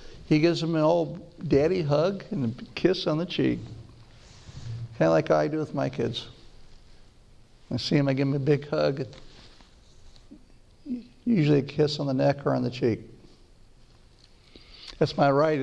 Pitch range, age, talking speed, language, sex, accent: 120-160 Hz, 60-79, 165 wpm, English, male, American